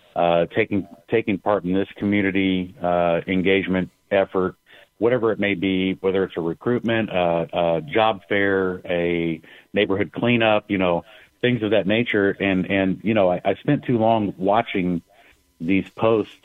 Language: English